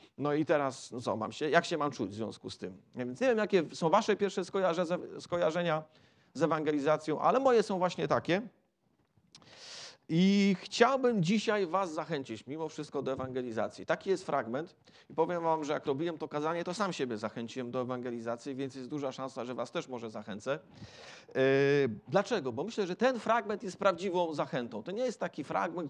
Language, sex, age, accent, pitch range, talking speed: Polish, male, 40-59, native, 150-195 Hz, 180 wpm